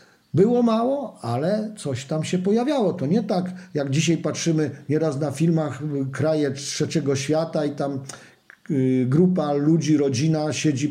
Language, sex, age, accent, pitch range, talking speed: Polish, male, 50-69, native, 140-180 Hz, 145 wpm